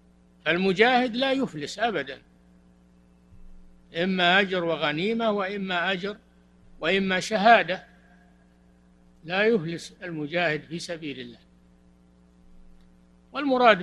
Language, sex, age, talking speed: Arabic, male, 60-79, 80 wpm